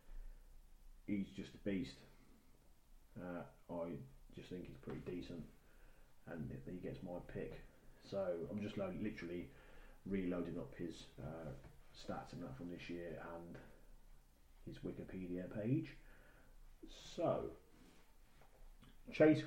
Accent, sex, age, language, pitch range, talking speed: British, male, 30-49, English, 90-115 Hz, 110 wpm